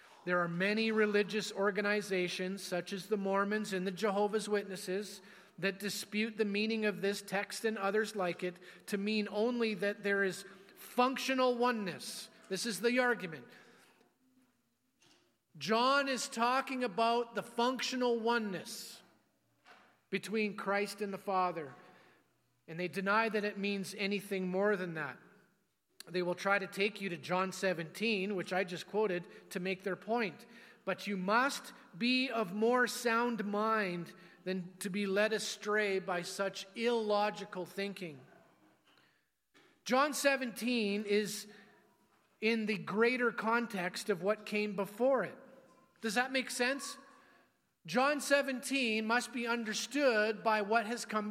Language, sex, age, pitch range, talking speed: English, male, 40-59, 195-235 Hz, 135 wpm